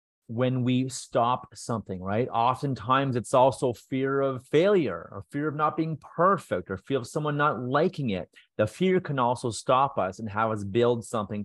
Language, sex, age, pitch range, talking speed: English, male, 30-49, 105-135 Hz, 185 wpm